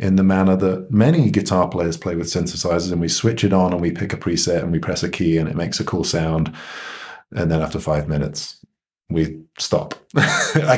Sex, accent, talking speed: male, British, 215 wpm